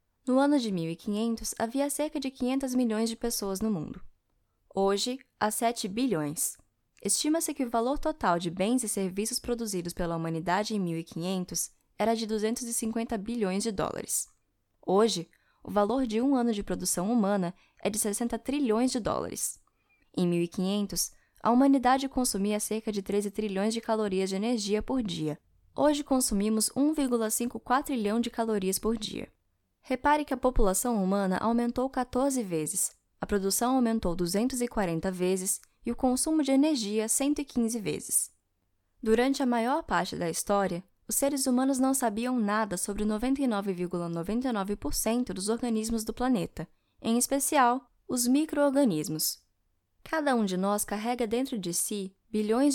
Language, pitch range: Portuguese, 195-255 Hz